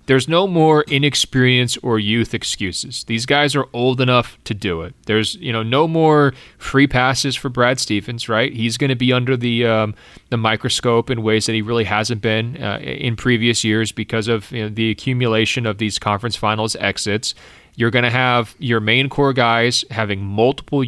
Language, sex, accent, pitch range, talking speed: English, male, American, 110-125 Hz, 195 wpm